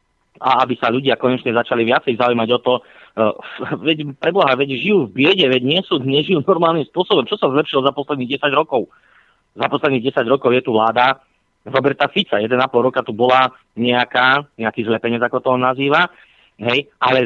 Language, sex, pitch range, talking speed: Slovak, male, 120-170 Hz, 180 wpm